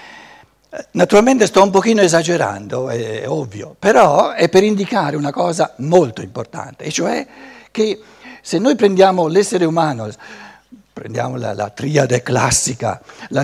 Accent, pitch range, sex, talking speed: native, 130-190 Hz, male, 130 wpm